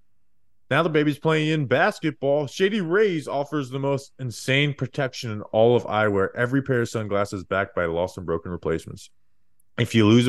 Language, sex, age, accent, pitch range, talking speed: English, male, 20-39, American, 105-145 Hz, 175 wpm